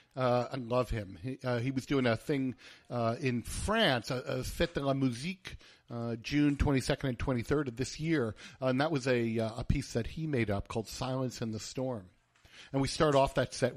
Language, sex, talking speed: English, male, 220 wpm